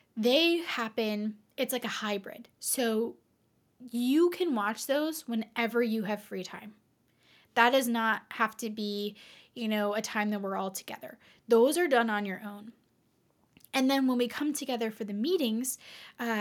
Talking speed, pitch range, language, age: 170 wpm, 210-245 Hz, English, 10-29